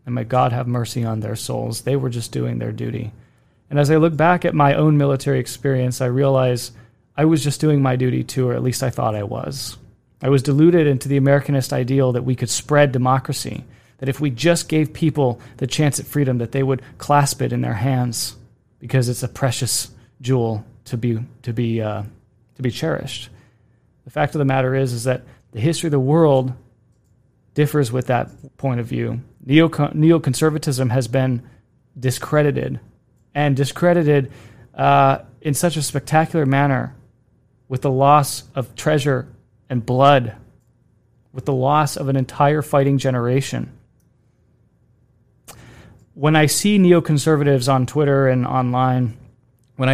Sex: male